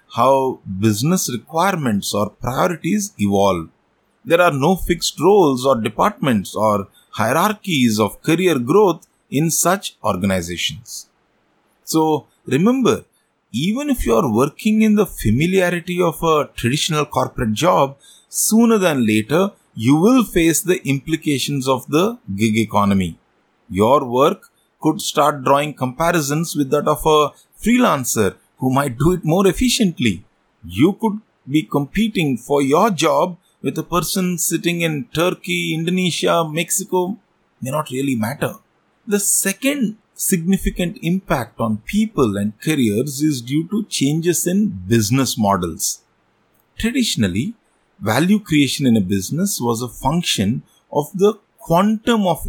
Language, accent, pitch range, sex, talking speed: English, Indian, 130-190 Hz, male, 130 wpm